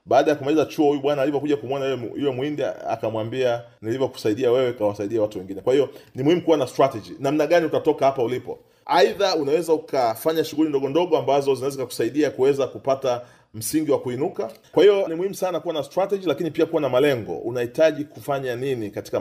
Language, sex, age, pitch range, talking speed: Swahili, male, 30-49, 115-155 Hz, 180 wpm